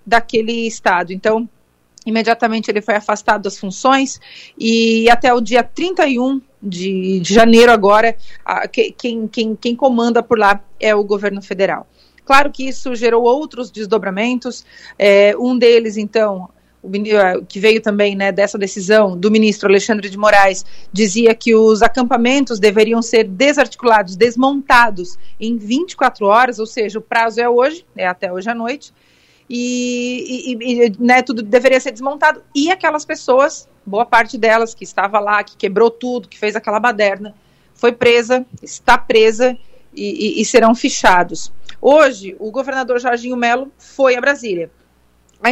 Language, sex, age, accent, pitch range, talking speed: Portuguese, female, 40-59, Brazilian, 215-255 Hz, 145 wpm